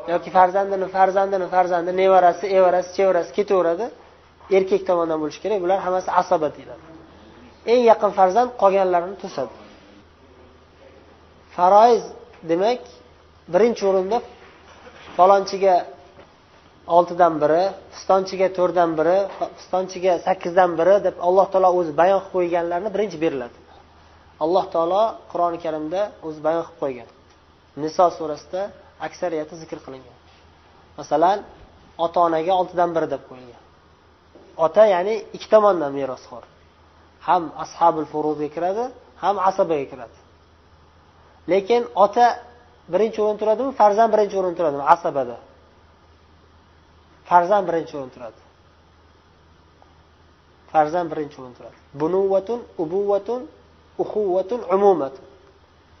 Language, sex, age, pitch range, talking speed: Bulgarian, male, 30-49, 130-190 Hz, 90 wpm